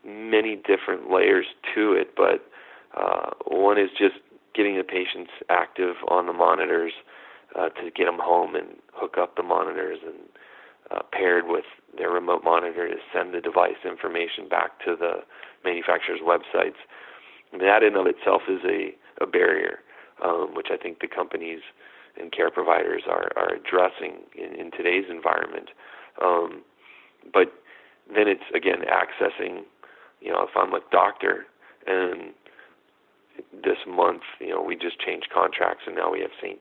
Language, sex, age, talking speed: English, male, 40-59, 155 wpm